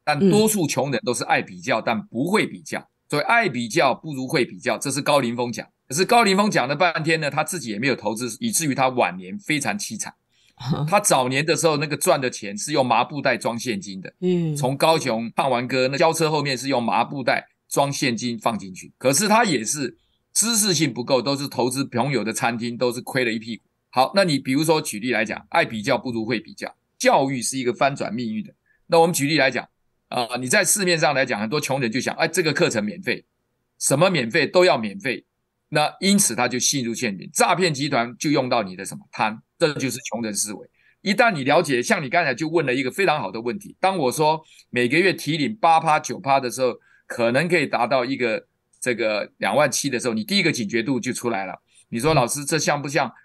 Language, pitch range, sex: Chinese, 125-170 Hz, male